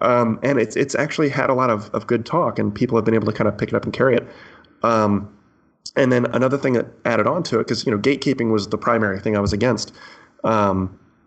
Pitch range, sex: 105-120 Hz, male